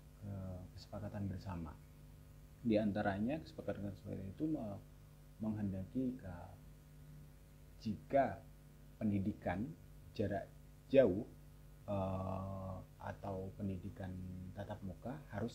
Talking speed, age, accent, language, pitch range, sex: 60 wpm, 30-49, native, Indonesian, 85-105 Hz, male